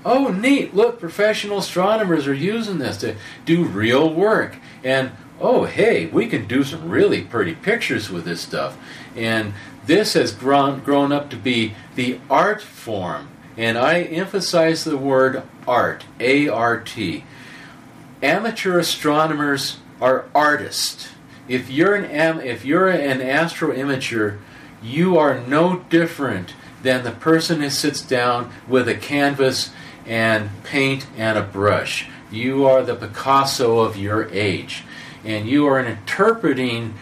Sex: male